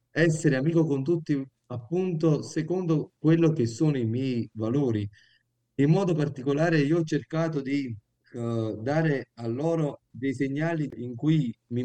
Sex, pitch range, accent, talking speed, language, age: male, 120-155 Hz, native, 135 wpm, Italian, 30-49